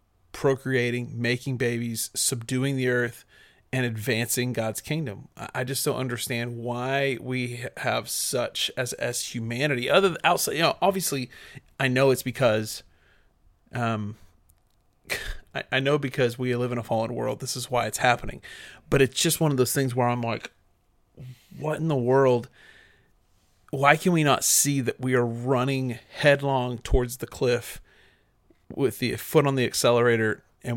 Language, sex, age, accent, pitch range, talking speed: English, male, 30-49, American, 115-135 Hz, 160 wpm